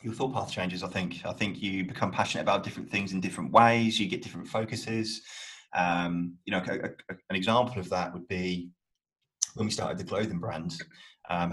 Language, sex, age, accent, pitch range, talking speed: English, male, 20-39, British, 90-115 Hz, 205 wpm